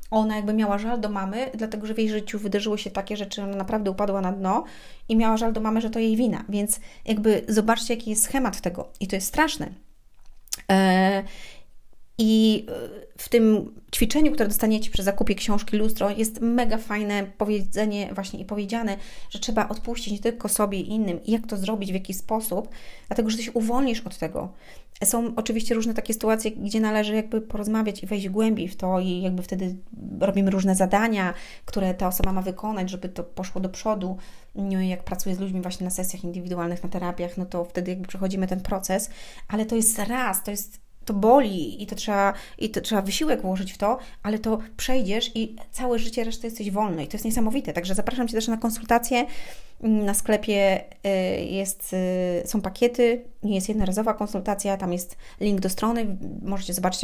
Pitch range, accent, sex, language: 190-225 Hz, native, female, Polish